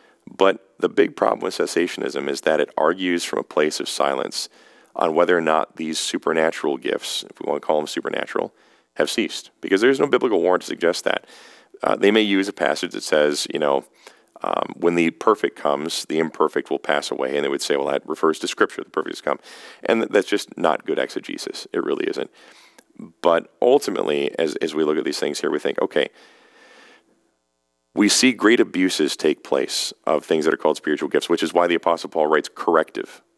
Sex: male